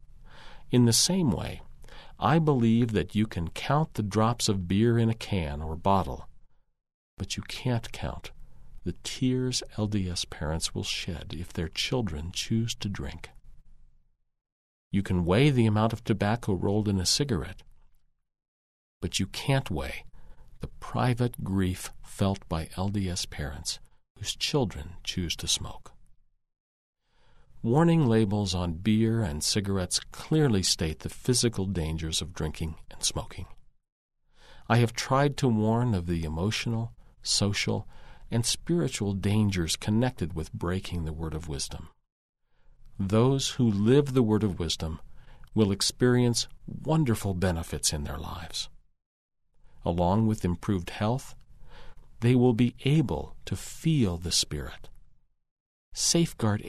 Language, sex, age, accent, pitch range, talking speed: English, male, 50-69, American, 85-120 Hz, 130 wpm